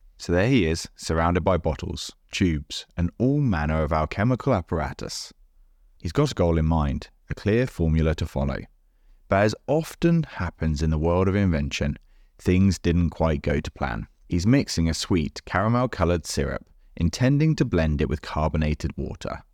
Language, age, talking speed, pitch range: English, 30-49, 165 wpm, 80-100 Hz